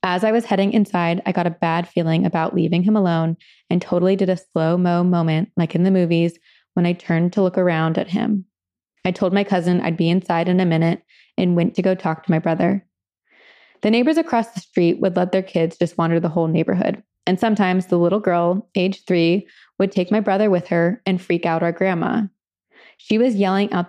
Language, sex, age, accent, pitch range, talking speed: English, female, 20-39, American, 175-205 Hz, 215 wpm